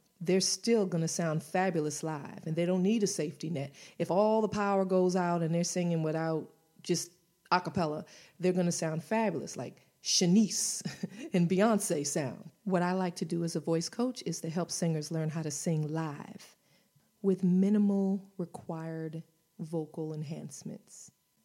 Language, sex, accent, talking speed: English, female, American, 165 wpm